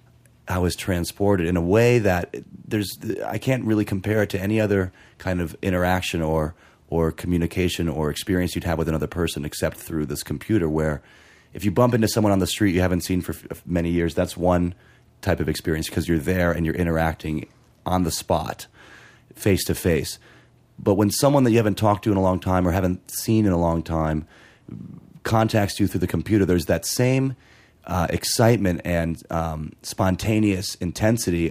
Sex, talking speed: male, 190 wpm